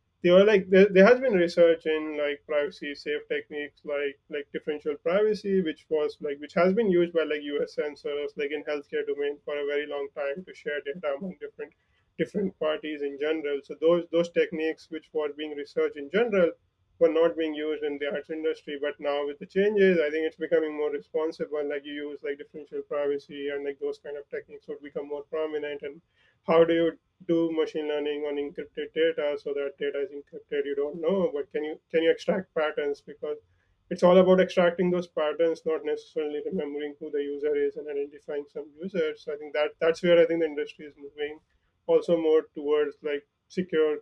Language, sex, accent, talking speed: English, male, Indian, 210 wpm